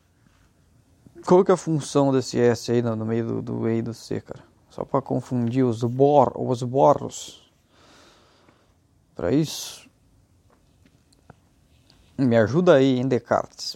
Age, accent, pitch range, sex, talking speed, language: 20-39, Brazilian, 115-145 Hz, male, 140 wpm, Portuguese